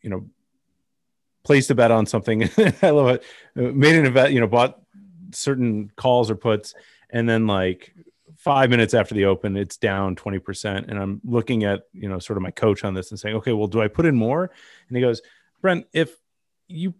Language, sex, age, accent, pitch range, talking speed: English, male, 30-49, American, 105-145 Hz, 205 wpm